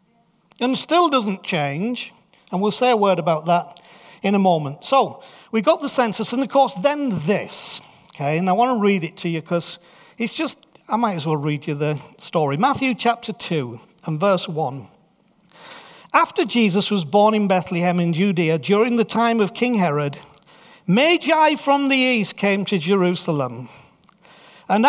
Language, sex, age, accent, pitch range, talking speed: English, male, 50-69, British, 180-245 Hz, 175 wpm